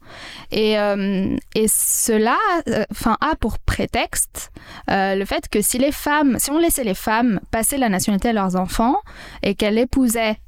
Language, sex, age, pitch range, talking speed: French, female, 10-29, 210-270 Hz, 165 wpm